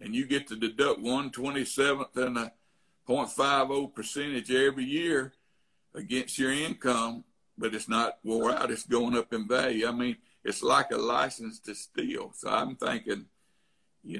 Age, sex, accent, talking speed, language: 60-79, male, American, 160 wpm, English